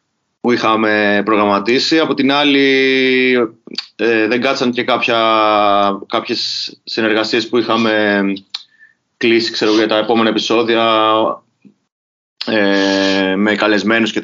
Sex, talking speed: male, 90 wpm